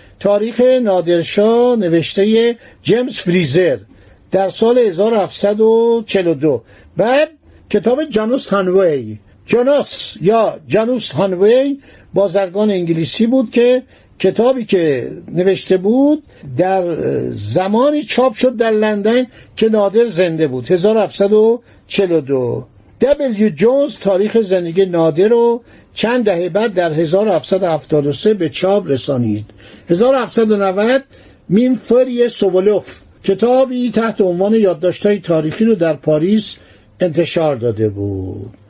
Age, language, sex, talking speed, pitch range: 60-79, Persian, male, 100 wpm, 170-230 Hz